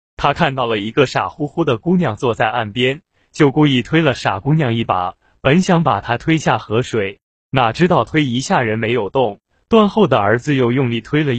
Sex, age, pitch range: male, 20-39, 115-155 Hz